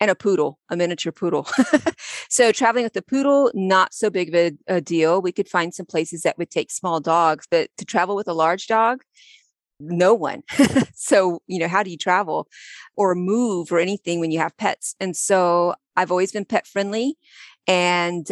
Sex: female